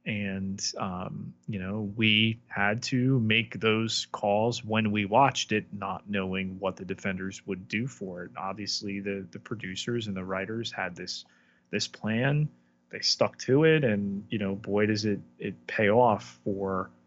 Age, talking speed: 30-49, 170 wpm